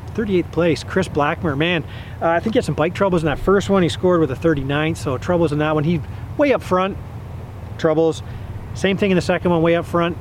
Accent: American